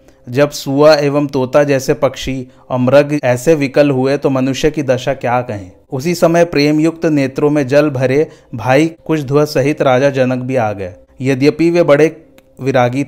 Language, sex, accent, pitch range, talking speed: Hindi, male, native, 125-150 Hz, 175 wpm